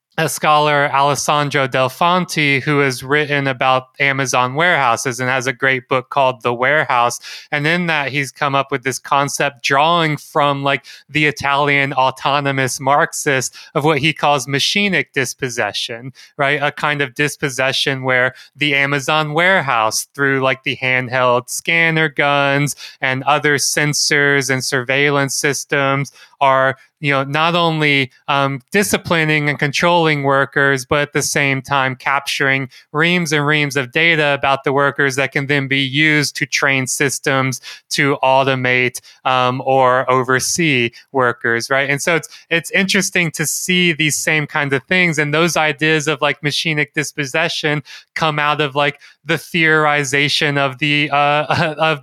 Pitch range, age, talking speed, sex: 135-155 Hz, 20-39, 150 wpm, male